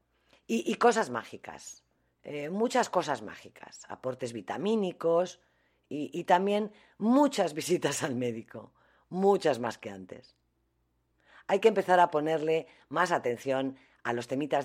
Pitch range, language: 130-200 Hz, Spanish